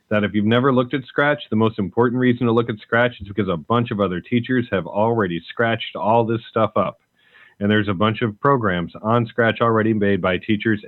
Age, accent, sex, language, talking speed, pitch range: 40-59, American, male, English, 225 wpm, 100-120 Hz